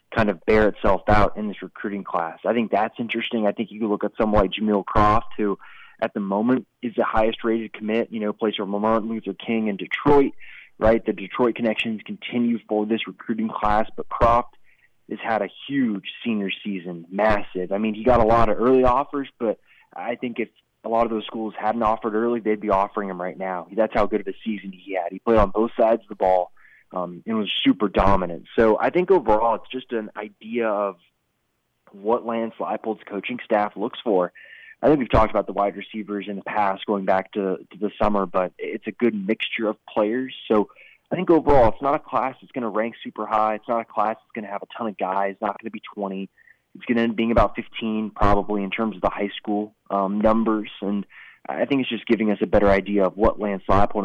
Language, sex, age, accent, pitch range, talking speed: English, male, 20-39, American, 100-115 Hz, 230 wpm